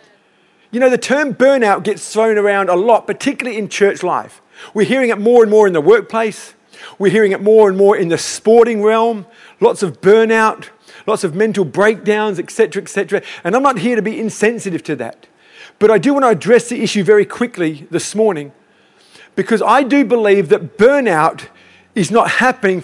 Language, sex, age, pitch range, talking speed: English, male, 50-69, 190-235 Hz, 190 wpm